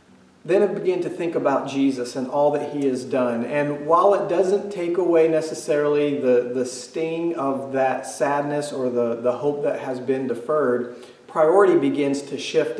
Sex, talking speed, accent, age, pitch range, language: male, 180 wpm, American, 40-59, 125-170 Hz, English